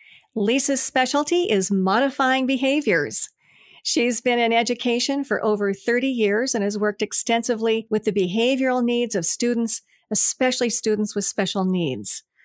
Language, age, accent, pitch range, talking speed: English, 50-69, American, 195-240 Hz, 135 wpm